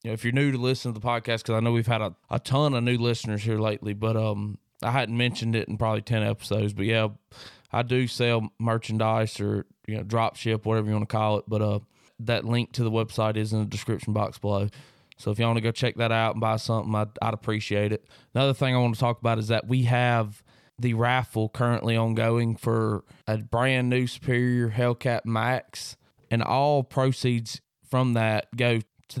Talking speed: 220 wpm